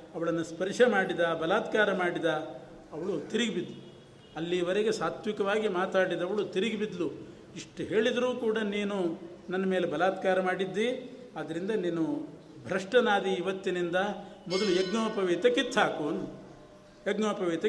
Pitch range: 170-205 Hz